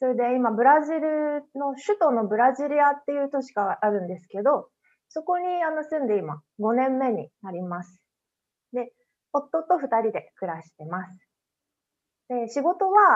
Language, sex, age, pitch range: Japanese, female, 20-39, 200-295 Hz